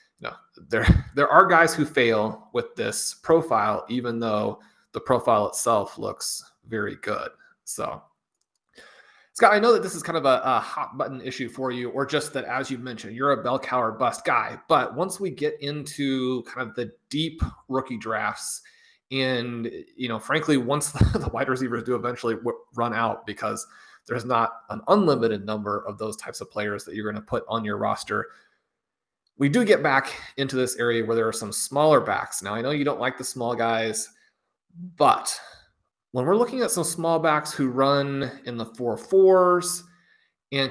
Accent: American